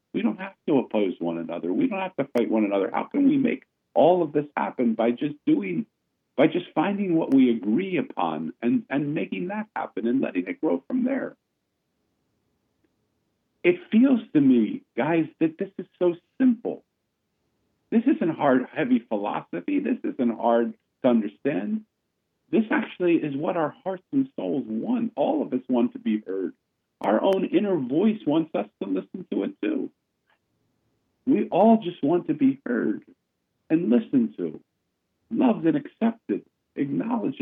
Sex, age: male, 50-69